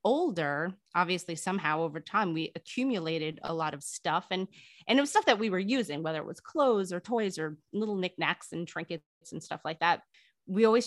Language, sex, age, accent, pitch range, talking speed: English, female, 30-49, American, 165-195 Hz, 205 wpm